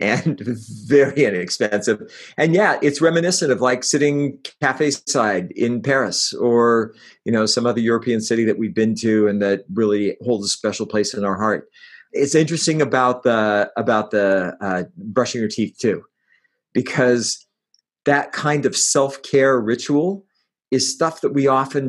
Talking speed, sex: 155 wpm, male